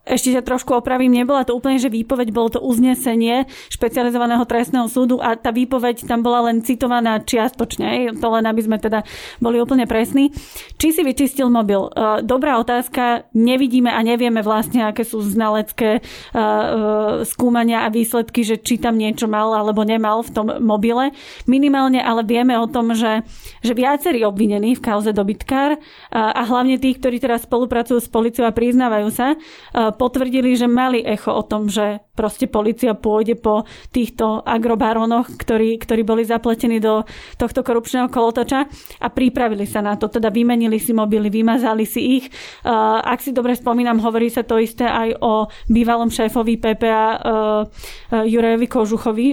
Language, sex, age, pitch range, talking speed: Slovak, female, 30-49, 225-250 Hz, 155 wpm